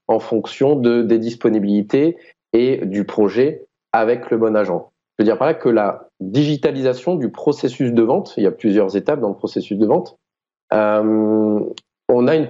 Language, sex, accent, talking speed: French, male, French, 180 wpm